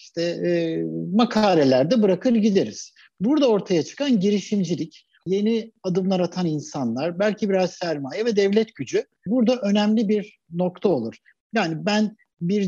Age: 60-79